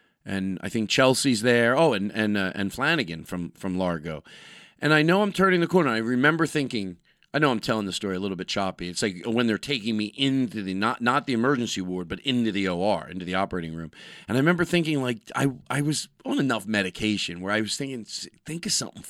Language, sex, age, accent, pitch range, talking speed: English, male, 40-59, American, 95-135 Hz, 230 wpm